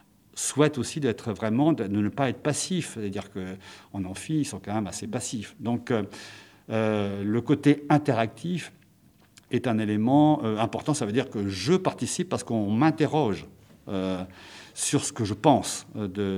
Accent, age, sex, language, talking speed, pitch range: French, 50-69, male, French, 160 wpm, 100-145 Hz